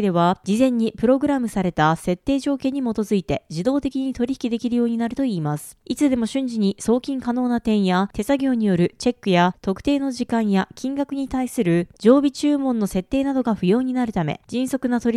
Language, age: Japanese, 20-39